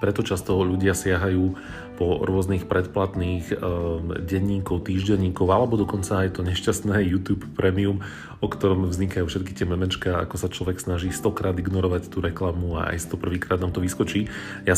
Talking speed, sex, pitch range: 155 wpm, male, 90-100 Hz